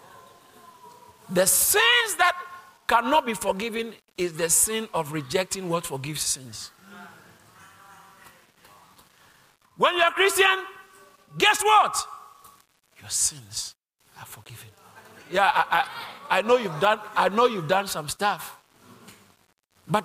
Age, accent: 50-69, Nigerian